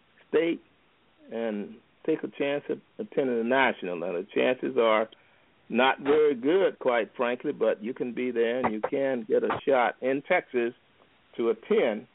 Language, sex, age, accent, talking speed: English, male, 50-69, American, 165 wpm